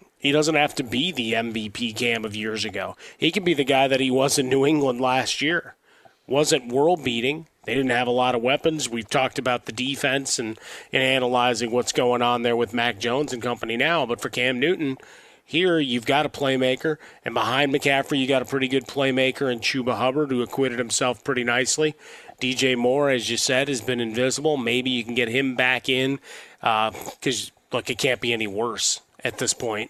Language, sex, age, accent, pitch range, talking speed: English, male, 30-49, American, 125-145 Hz, 205 wpm